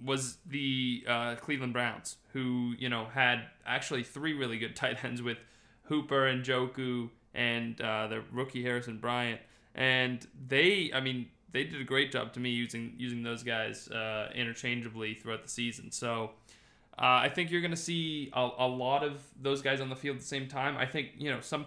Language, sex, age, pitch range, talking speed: English, male, 20-39, 120-140 Hz, 195 wpm